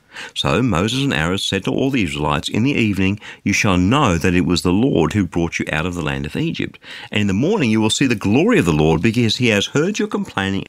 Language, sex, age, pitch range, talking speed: English, male, 50-69, 95-135 Hz, 265 wpm